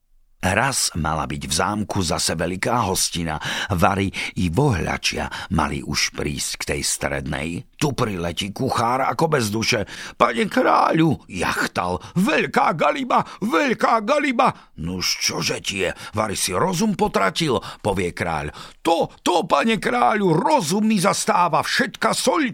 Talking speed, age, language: 130 wpm, 50-69, Slovak